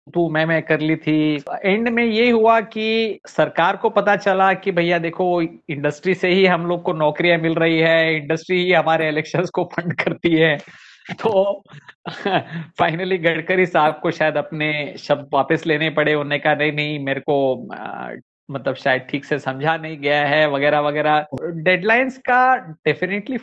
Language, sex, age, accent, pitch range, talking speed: English, male, 50-69, Indian, 160-195 Hz, 170 wpm